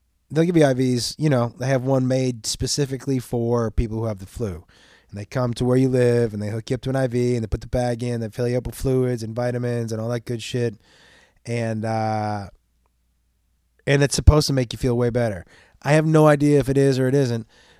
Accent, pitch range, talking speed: American, 95-135 Hz, 245 wpm